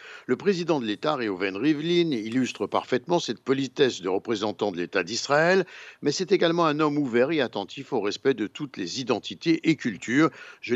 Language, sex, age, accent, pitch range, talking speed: Italian, male, 60-79, French, 110-160 Hz, 180 wpm